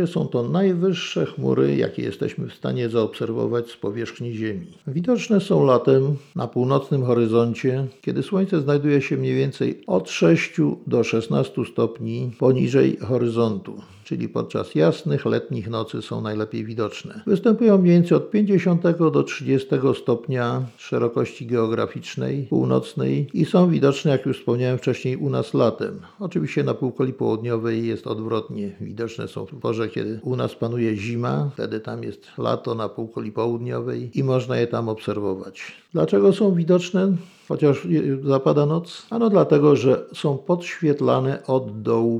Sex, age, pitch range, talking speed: male, 50-69, 115-155 Hz, 140 wpm